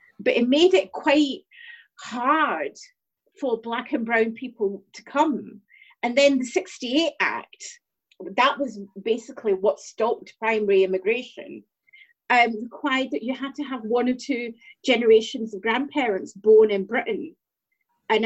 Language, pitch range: English, 225-295 Hz